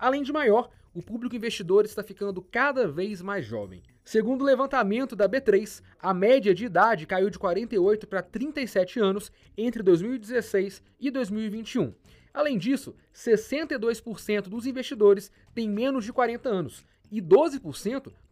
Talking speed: 140 wpm